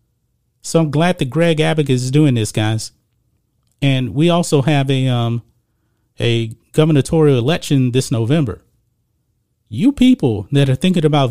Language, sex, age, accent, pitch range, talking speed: English, male, 40-59, American, 120-155 Hz, 145 wpm